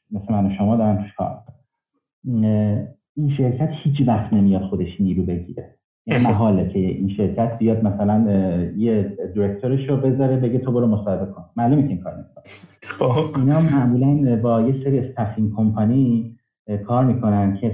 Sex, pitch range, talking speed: male, 100-125 Hz, 150 wpm